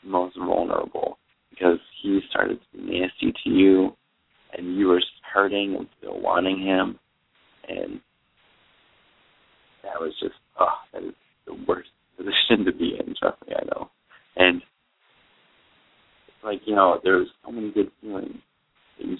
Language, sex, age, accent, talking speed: English, male, 30-49, American, 145 wpm